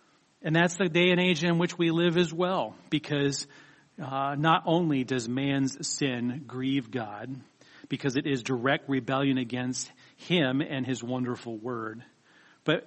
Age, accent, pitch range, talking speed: 40-59, American, 125-150 Hz, 155 wpm